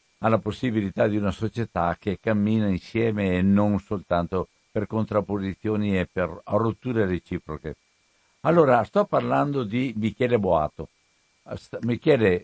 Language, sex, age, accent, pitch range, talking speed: Italian, male, 60-79, native, 95-145 Hz, 115 wpm